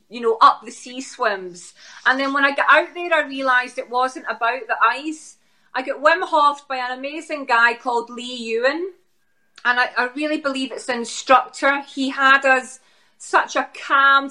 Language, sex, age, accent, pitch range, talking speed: English, female, 30-49, British, 245-305 Hz, 185 wpm